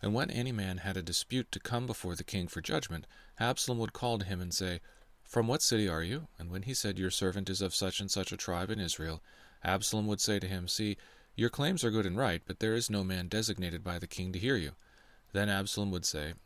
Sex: male